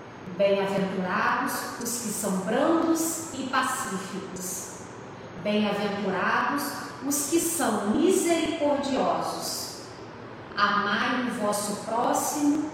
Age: 40-59